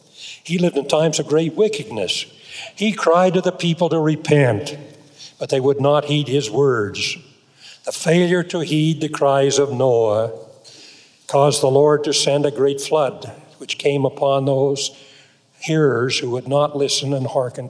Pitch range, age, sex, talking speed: 135-170 Hz, 60-79, male, 165 wpm